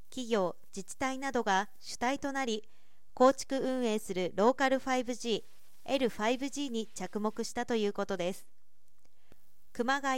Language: Japanese